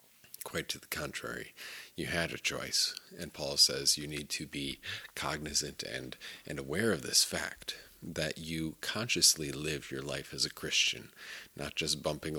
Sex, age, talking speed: male, 40-59, 165 wpm